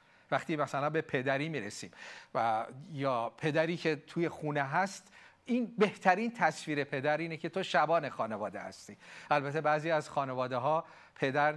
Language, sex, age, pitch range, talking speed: Persian, male, 40-59, 135-170 Hz, 140 wpm